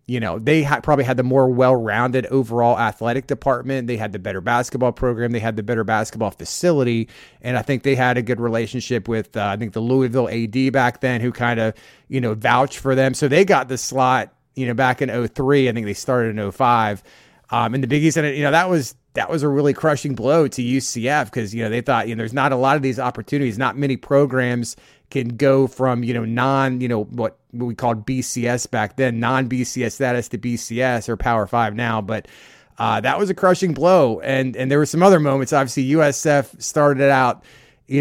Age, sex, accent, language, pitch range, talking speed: 30-49, male, American, English, 120-140 Hz, 225 wpm